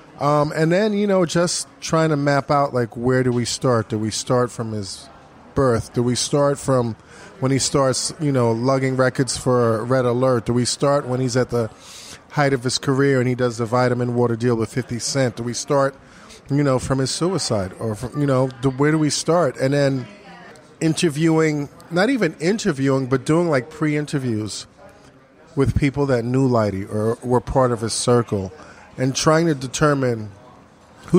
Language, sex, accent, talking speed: English, male, American, 185 wpm